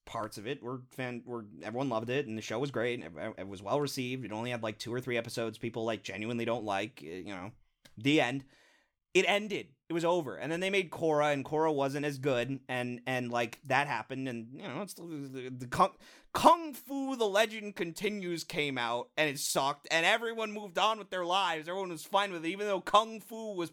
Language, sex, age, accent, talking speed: English, male, 30-49, American, 230 wpm